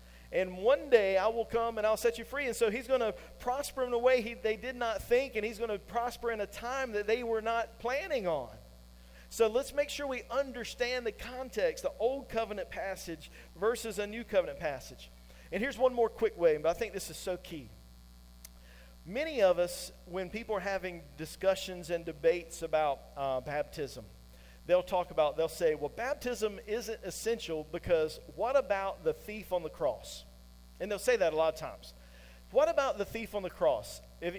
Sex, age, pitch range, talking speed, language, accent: male, 40-59, 165-230 Hz, 200 wpm, English, American